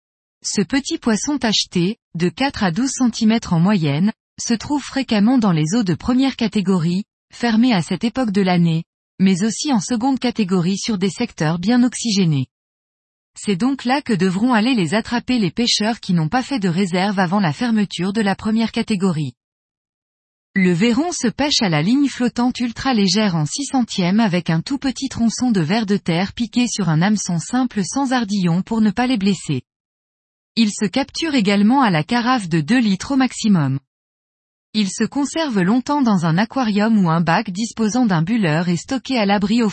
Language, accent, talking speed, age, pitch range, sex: French, French, 185 wpm, 20-39, 185-245 Hz, female